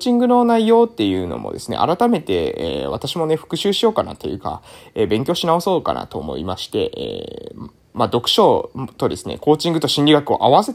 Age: 20-39